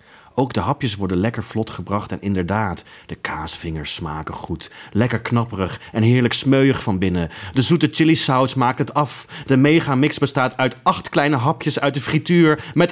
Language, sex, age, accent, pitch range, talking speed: Dutch, male, 30-49, Dutch, 90-140 Hz, 175 wpm